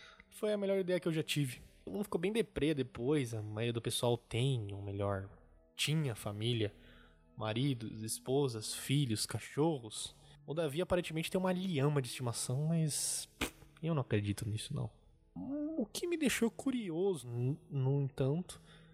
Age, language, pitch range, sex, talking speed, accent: 20-39, Portuguese, 120-190 Hz, male, 150 wpm, Brazilian